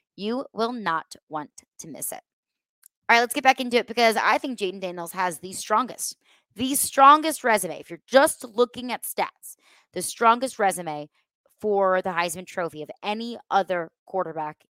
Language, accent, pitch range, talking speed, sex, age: English, American, 180-230 Hz, 170 wpm, female, 20-39